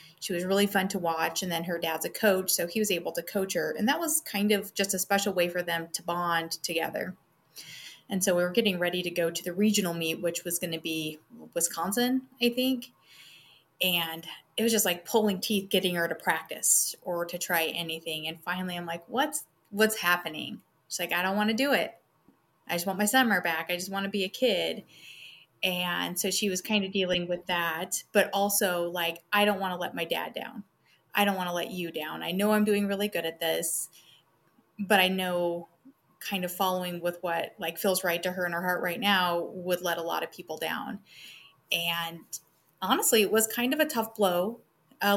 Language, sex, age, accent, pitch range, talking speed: English, female, 30-49, American, 170-205 Hz, 220 wpm